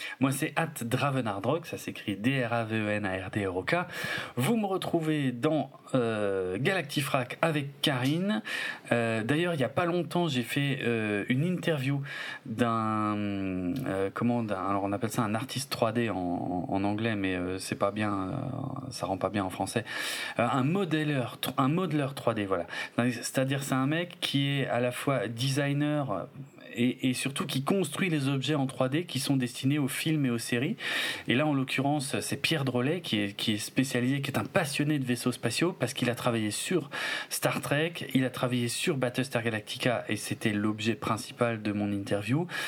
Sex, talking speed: male, 190 wpm